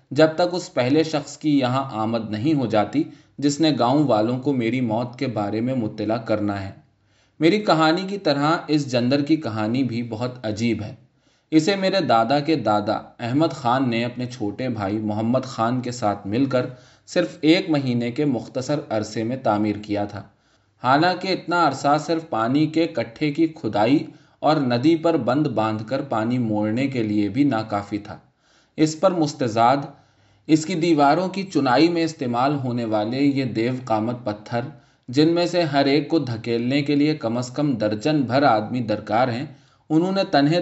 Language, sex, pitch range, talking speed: Urdu, male, 115-150 Hz, 180 wpm